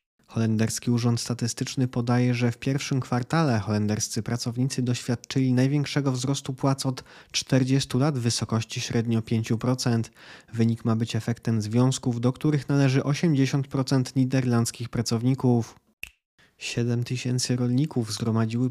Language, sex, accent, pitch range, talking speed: Polish, male, native, 115-130 Hz, 115 wpm